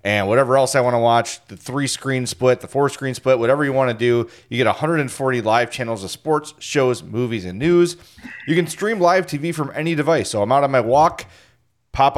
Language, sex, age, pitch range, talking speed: English, male, 30-49, 115-150 Hz, 225 wpm